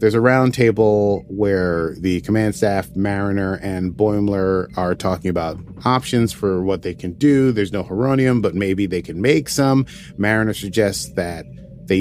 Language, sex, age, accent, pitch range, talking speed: English, male, 30-49, American, 90-115 Hz, 160 wpm